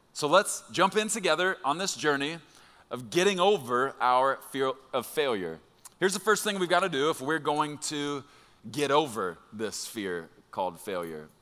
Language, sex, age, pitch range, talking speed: English, male, 30-49, 130-175 Hz, 175 wpm